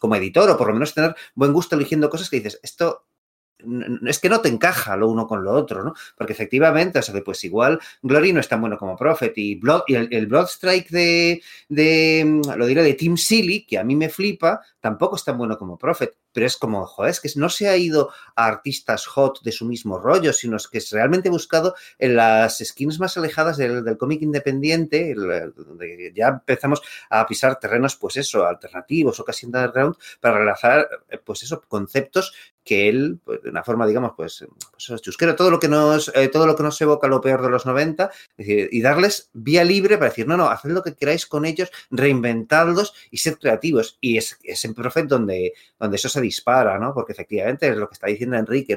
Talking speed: 210 wpm